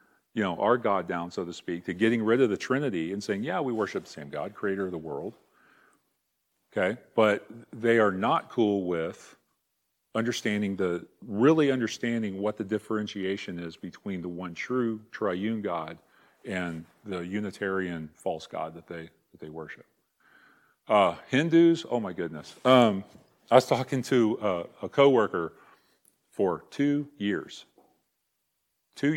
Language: English